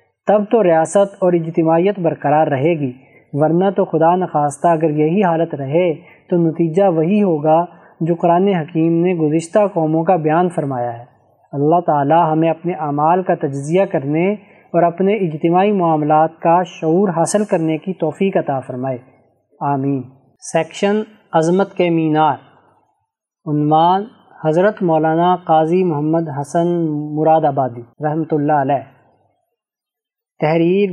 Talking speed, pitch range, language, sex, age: 130 wpm, 150-185 Hz, Urdu, male, 20-39